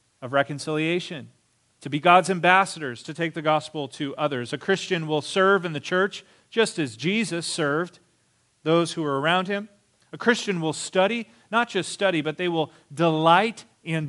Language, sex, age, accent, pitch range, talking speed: English, male, 40-59, American, 145-190 Hz, 170 wpm